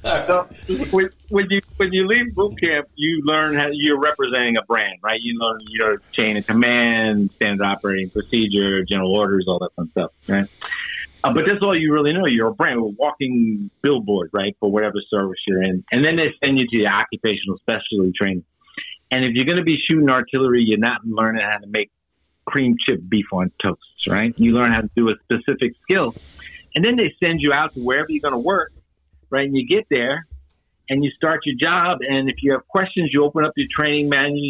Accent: American